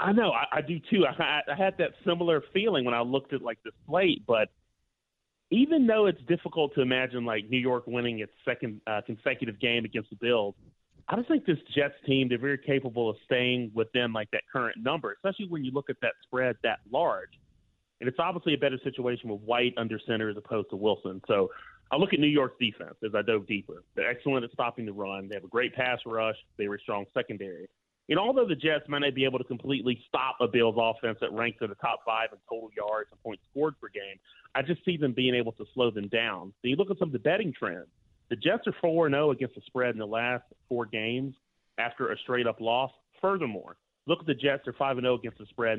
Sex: male